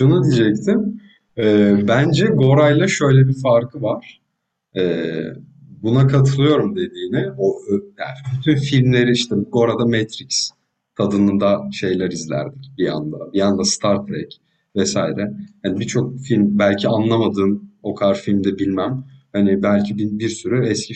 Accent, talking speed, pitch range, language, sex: native, 130 wpm, 100-140 Hz, Turkish, male